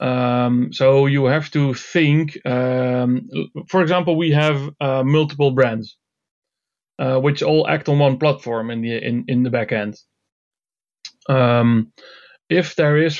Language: English